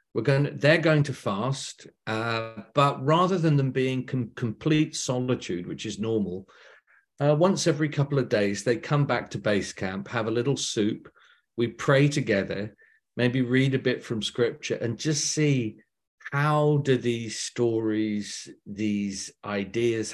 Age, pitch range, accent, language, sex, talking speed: 50-69, 110-140 Hz, British, English, male, 160 wpm